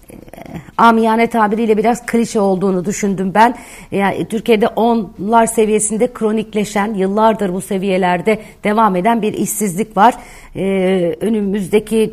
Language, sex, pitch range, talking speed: Turkish, female, 190-225 Hz, 110 wpm